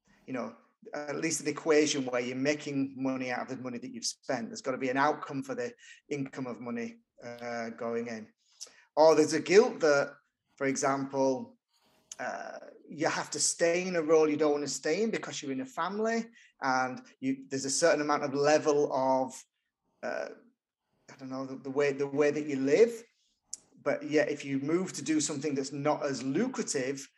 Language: English